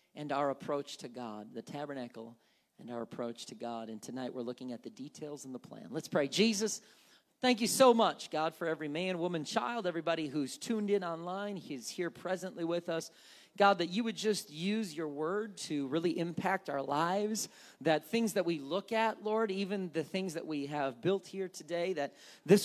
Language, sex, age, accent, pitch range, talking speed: English, male, 40-59, American, 145-220 Hz, 200 wpm